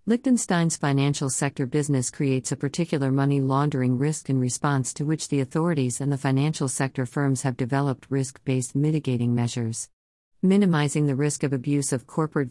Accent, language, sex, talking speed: American, English, female, 160 wpm